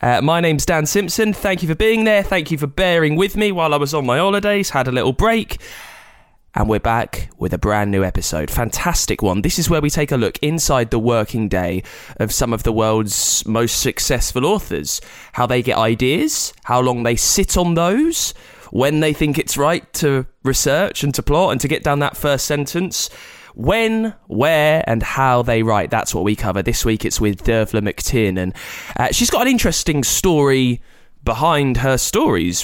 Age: 20-39